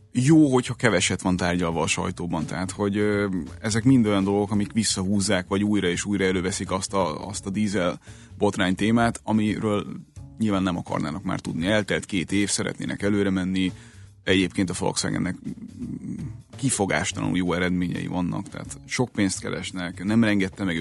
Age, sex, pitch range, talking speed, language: 30-49, male, 90-105 Hz, 155 wpm, Hungarian